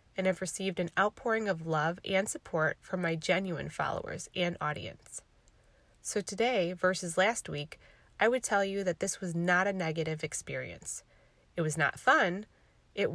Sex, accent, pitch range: female, American, 160-195 Hz